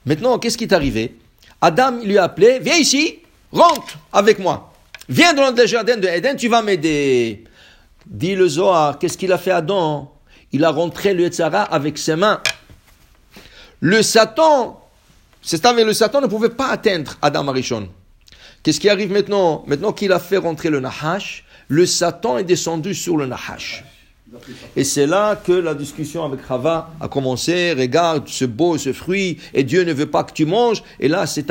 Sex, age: male, 60-79